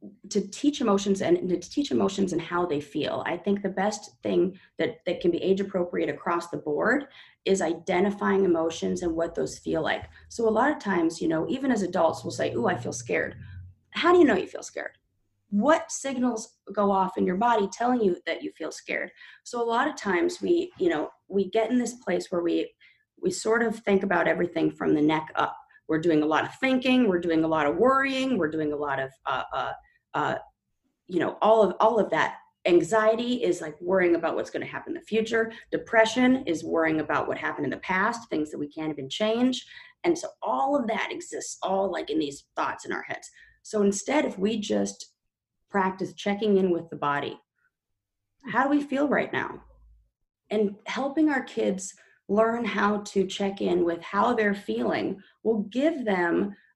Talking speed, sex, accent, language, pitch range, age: 205 wpm, female, American, English, 170-245 Hz, 30-49